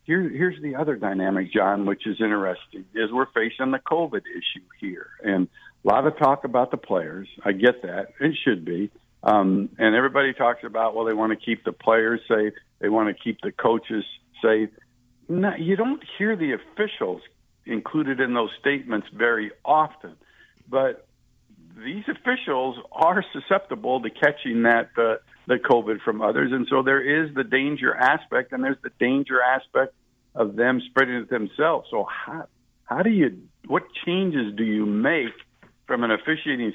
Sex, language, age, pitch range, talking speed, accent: male, English, 60-79, 110-135 Hz, 170 wpm, American